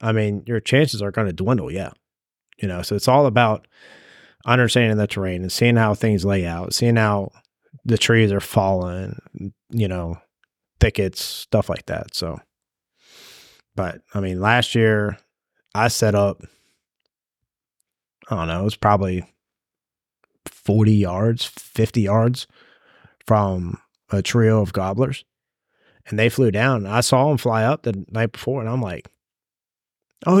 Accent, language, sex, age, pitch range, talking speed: American, English, male, 30-49, 105-130 Hz, 150 wpm